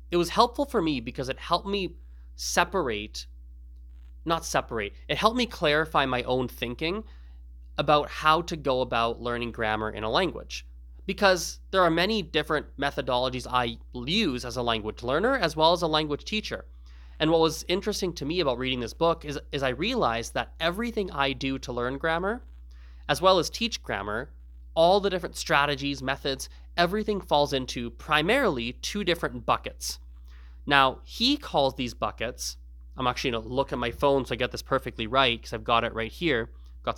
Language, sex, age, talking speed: English, male, 20-39, 180 wpm